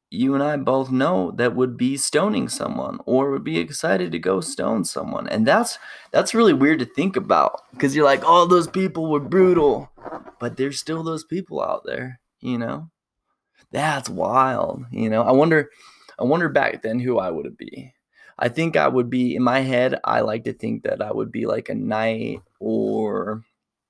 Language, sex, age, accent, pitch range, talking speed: English, male, 20-39, American, 115-140 Hz, 195 wpm